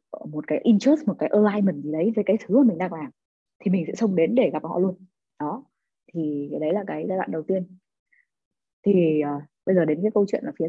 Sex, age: female, 20-39